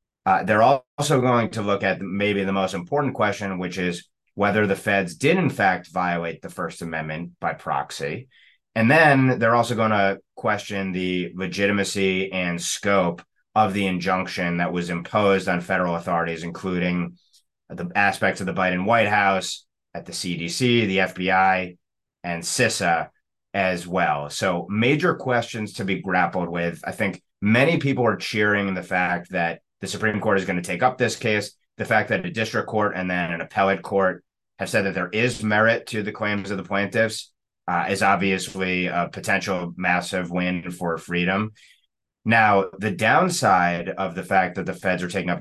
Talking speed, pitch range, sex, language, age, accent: 175 wpm, 90-110 Hz, male, English, 30-49, American